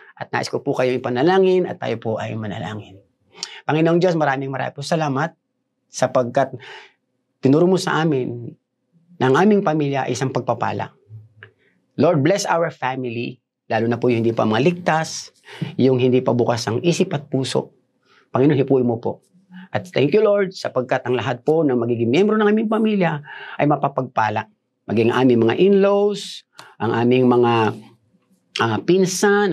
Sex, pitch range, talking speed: male, 115-175 Hz, 160 wpm